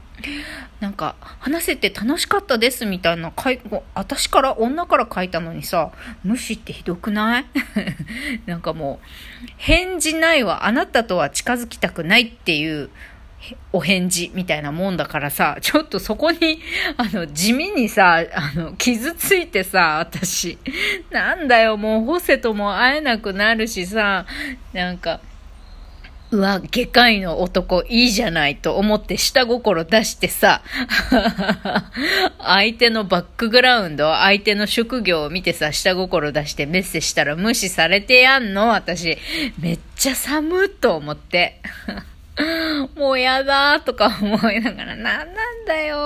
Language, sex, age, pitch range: Japanese, female, 40-59, 180-280 Hz